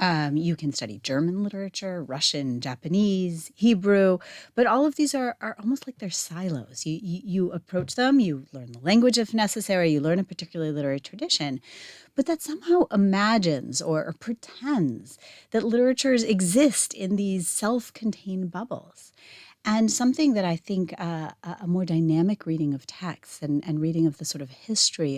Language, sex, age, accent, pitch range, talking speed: English, female, 30-49, American, 155-220 Hz, 165 wpm